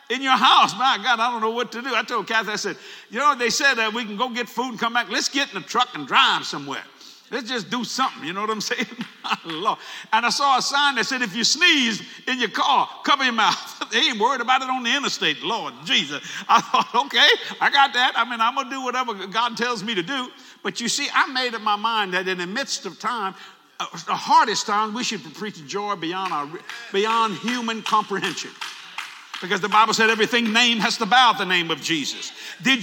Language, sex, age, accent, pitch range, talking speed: English, male, 60-79, American, 220-275 Hz, 240 wpm